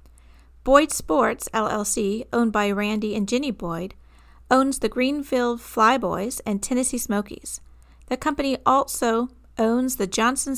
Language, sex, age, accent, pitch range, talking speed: English, female, 40-59, American, 205-255 Hz, 125 wpm